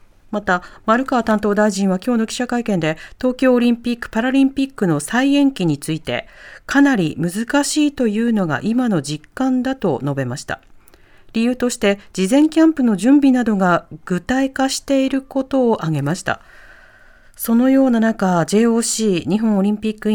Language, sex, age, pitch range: Japanese, female, 40-59, 175-250 Hz